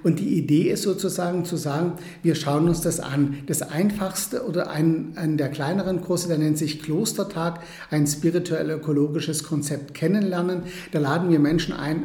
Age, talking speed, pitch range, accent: 60-79, 170 wpm, 150-175 Hz, German